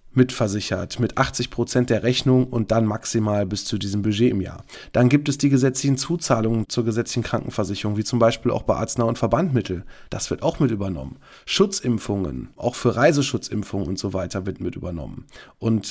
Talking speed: 180 wpm